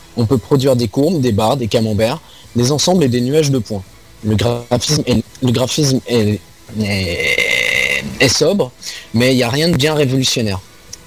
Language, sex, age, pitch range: French, male, 20-39, 110-150 Hz